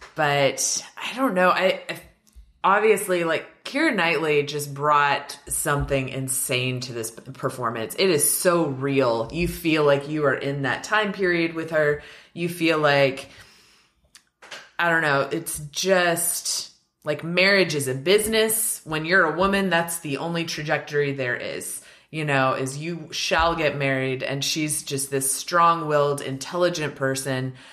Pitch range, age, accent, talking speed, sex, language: 135-175 Hz, 20-39, American, 150 wpm, female, English